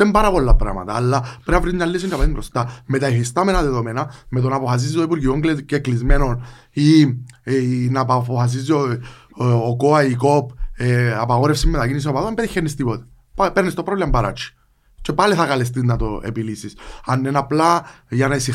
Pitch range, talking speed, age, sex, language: 120-150 Hz, 115 wpm, 20-39, male, Greek